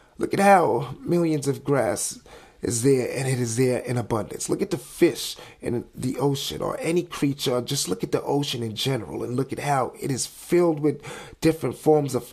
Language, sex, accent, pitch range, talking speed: English, male, American, 120-150 Hz, 205 wpm